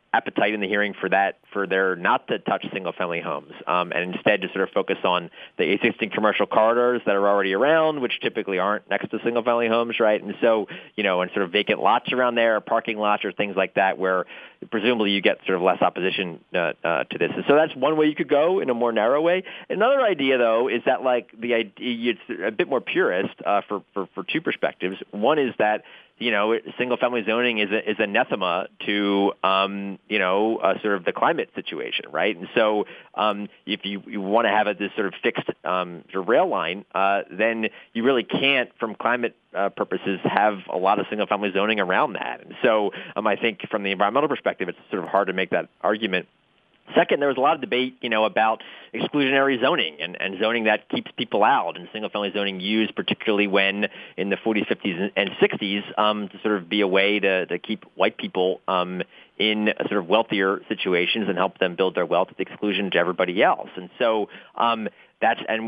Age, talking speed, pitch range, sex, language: 30-49, 215 wpm, 100-115 Hz, male, English